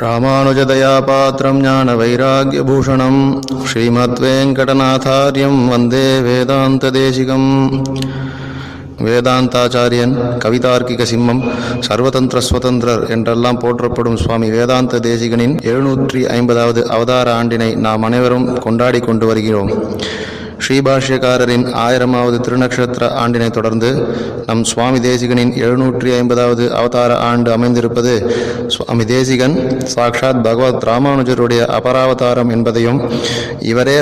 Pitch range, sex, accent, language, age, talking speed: 115-130 Hz, male, native, Tamil, 30-49, 75 wpm